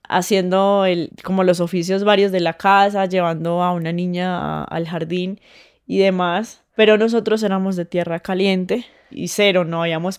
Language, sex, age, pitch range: Spanish, female, 10-29, 180-210 Hz